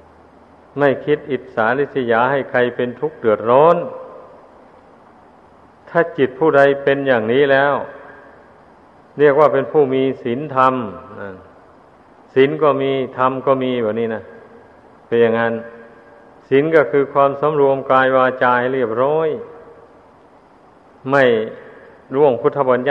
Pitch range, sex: 125-145 Hz, male